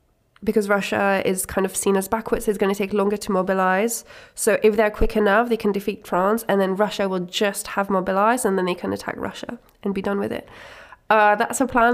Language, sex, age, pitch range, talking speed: Czech, female, 20-39, 195-220 Hz, 230 wpm